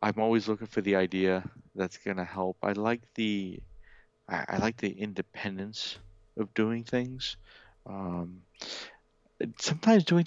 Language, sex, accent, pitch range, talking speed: English, male, American, 90-110 Hz, 140 wpm